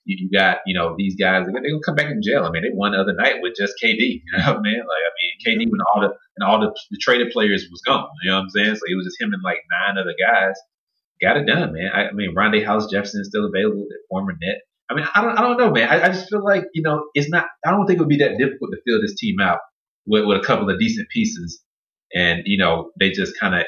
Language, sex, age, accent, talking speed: English, male, 30-49, American, 290 wpm